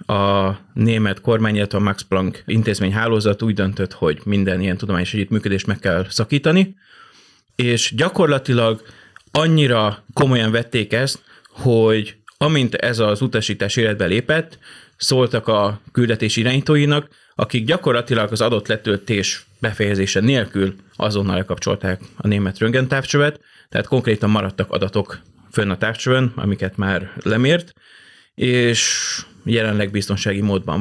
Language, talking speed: Hungarian, 120 wpm